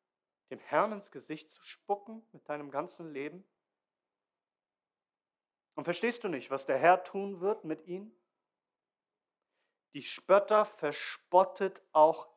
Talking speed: 120 wpm